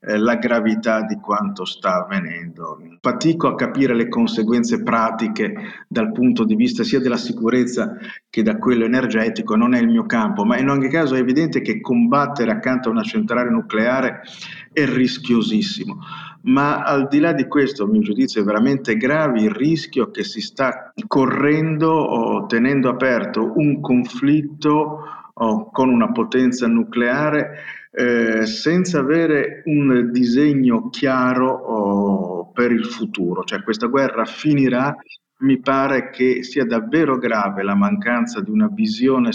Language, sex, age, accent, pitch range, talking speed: Italian, male, 50-69, native, 115-150 Hz, 145 wpm